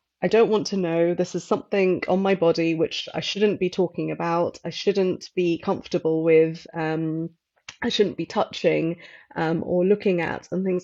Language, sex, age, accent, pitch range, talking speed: English, female, 30-49, British, 165-190 Hz, 185 wpm